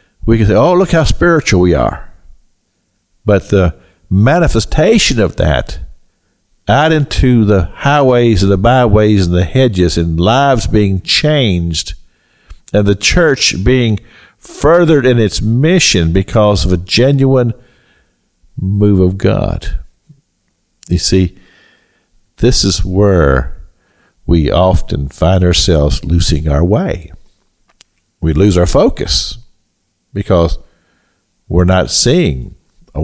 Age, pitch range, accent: 50-69, 85-110 Hz, American